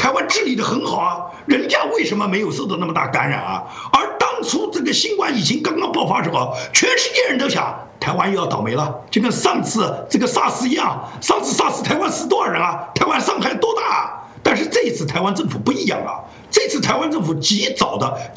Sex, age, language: male, 50-69, Chinese